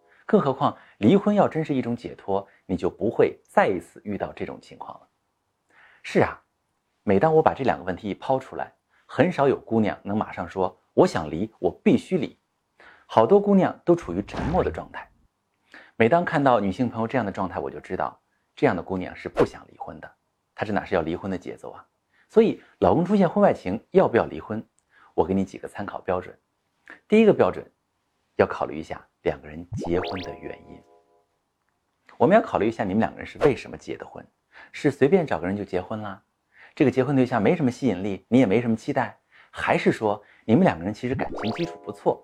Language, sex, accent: Chinese, male, native